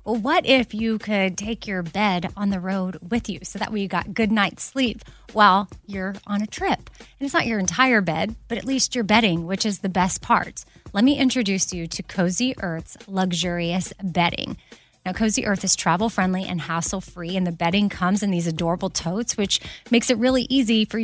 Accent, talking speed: American, 210 wpm